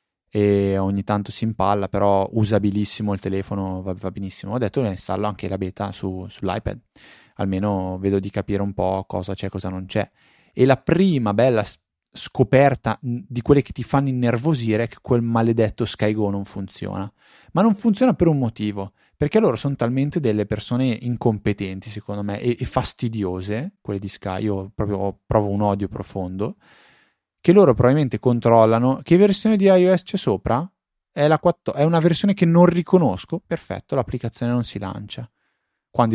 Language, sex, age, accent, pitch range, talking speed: Italian, male, 20-39, native, 100-140 Hz, 170 wpm